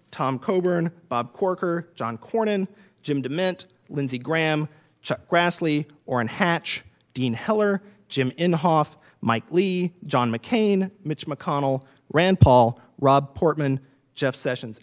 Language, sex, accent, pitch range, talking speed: English, male, American, 125-165 Hz, 120 wpm